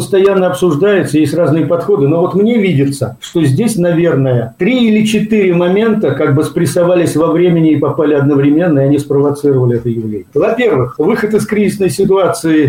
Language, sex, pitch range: Russian, male, 150-200 Hz